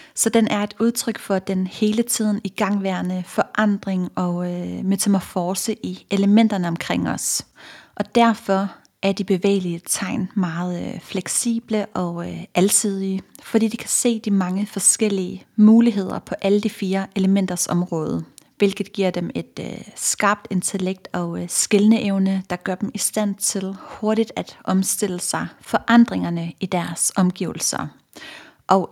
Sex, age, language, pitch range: female, 30-49, Danish, 180-215 Hz